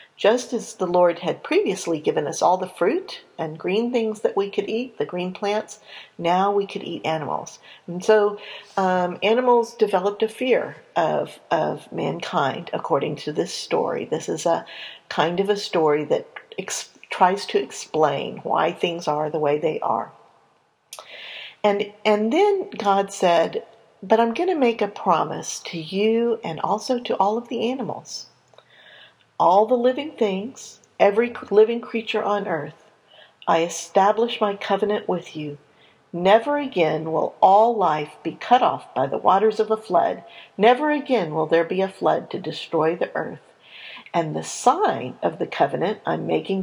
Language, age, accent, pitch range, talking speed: English, 50-69, American, 180-235 Hz, 165 wpm